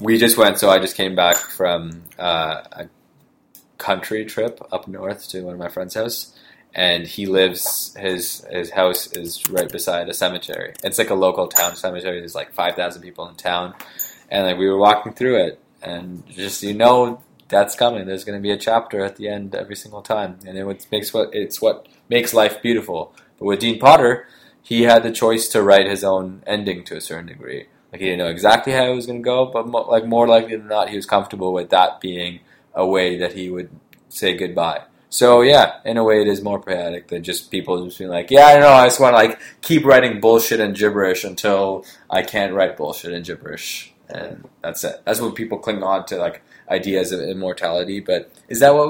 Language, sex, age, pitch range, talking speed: English, male, 20-39, 90-115 Hz, 220 wpm